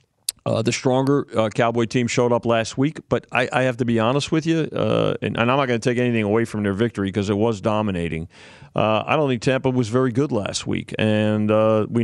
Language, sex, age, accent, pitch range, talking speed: English, male, 40-59, American, 115-140 Hz, 245 wpm